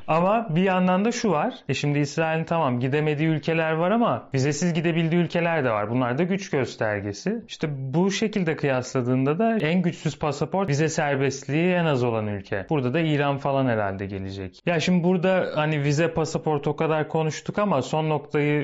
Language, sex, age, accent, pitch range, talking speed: Turkish, male, 30-49, native, 130-165 Hz, 175 wpm